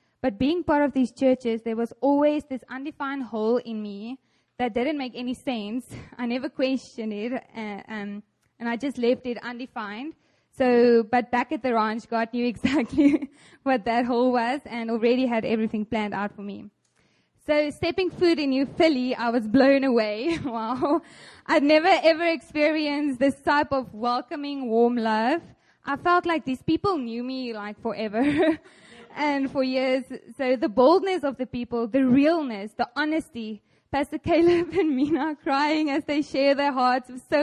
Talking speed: 175 wpm